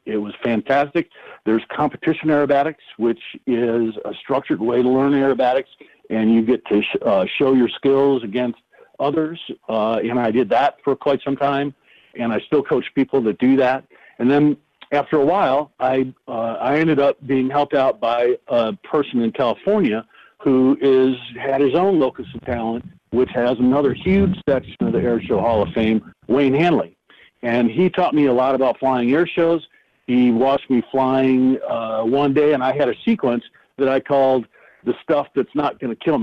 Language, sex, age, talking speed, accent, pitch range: English, male, 50-69, 185 wpm, American, 120-150 Hz